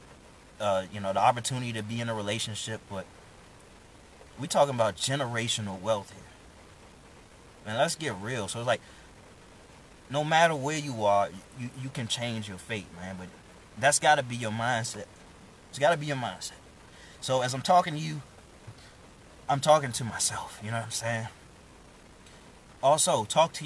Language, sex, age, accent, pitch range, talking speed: English, male, 20-39, American, 100-140 Hz, 170 wpm